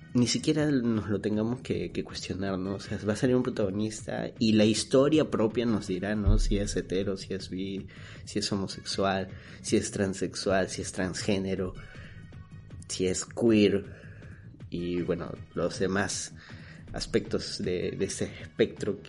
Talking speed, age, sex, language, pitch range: 155 wpm, 30-49, male, Spanish, 95-115 Hz